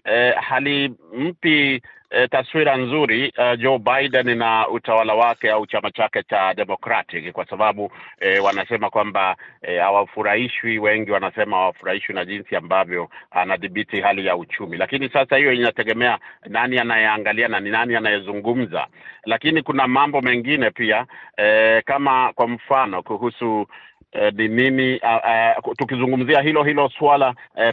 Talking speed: 140 wpm